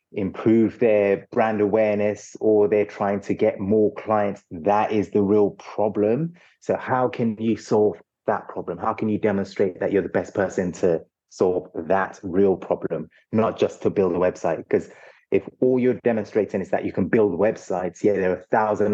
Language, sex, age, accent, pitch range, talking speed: English, male, 30-49, British, 100-110 Hz, 185 wpm